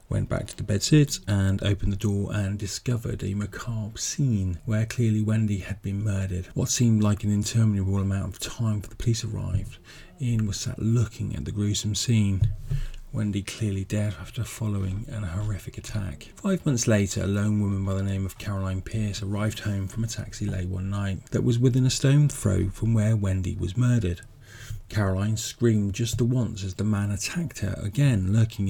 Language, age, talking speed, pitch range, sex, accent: English, 40-59, 190 wpm, 100-115 Hz, male, British